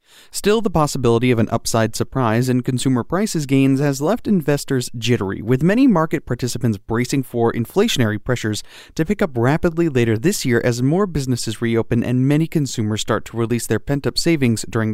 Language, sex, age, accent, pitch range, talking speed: English, male, 30-49, American, 110-140 Hz, 175 wpm